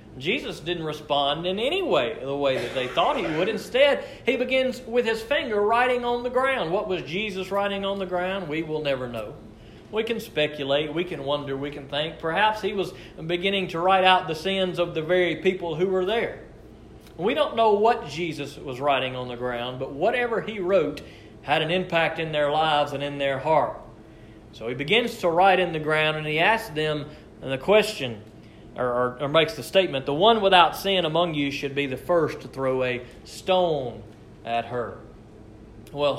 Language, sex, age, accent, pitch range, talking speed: English, male, 40-59, American, 130-185 Hz, 195 wpm